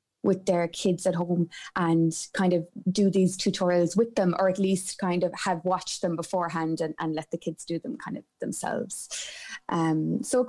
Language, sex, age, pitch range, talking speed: English, female, 20-39, 170-220 Hz, 200 wpm